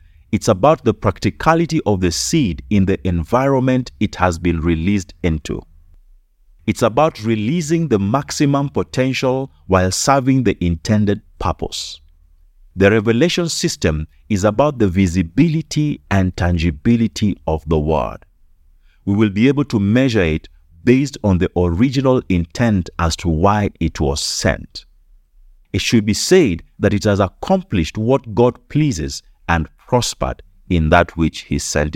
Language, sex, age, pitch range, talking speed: English, male, 50-69, 85-115 Hz, 140 wpm